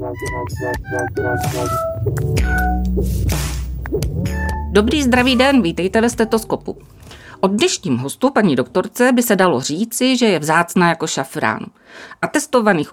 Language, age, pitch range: Czech, 50-69, 145-215 Hz